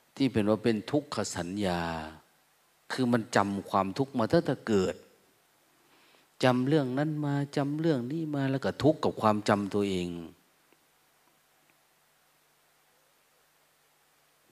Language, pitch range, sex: Thai, 100-135 Hz, male